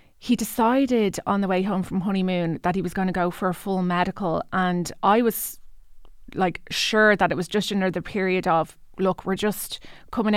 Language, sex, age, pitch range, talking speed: English, female, 20-39, 185-205 Hz, 195 wpm